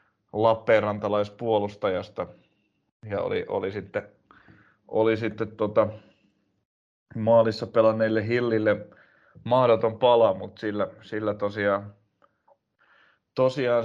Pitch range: 100-115 Hz